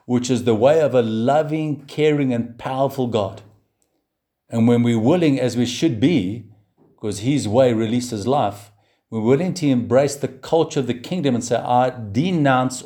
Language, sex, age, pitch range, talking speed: English, male, 50-69, 110-135 Hz, 175 wpm